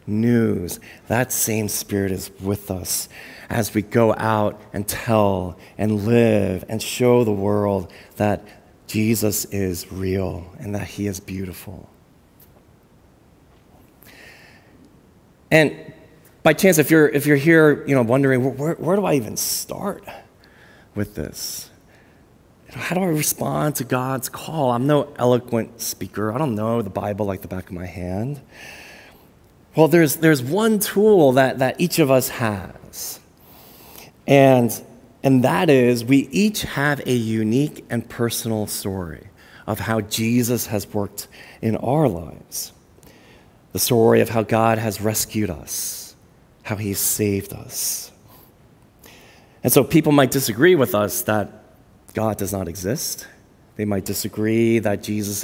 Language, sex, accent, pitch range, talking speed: English, male, American, 100-130 Hz, 140 wpm